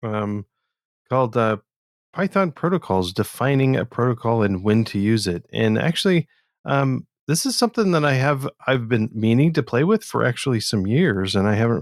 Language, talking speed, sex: English, 180 wpm, male